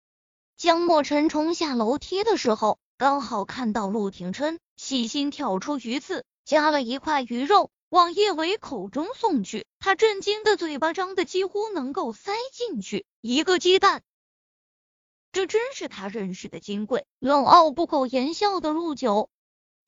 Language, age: Chinese, 20-39